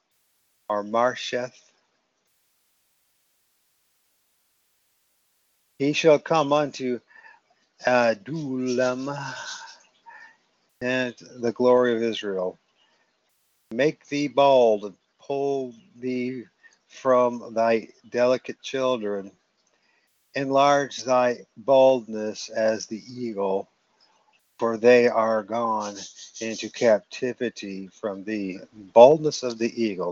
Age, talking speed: 50-69, 80 wpm